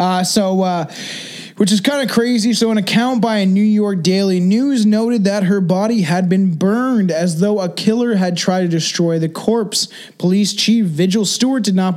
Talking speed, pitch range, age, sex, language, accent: 200 wpm, 180-225 Hz, 20-39, male, English, American